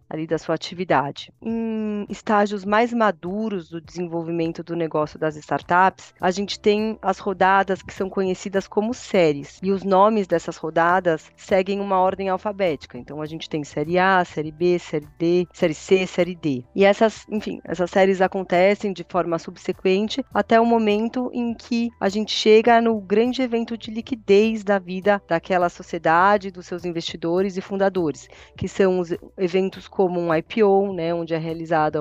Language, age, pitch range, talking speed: Portuguese, 30-49, 165-200 Hz, 165 wpm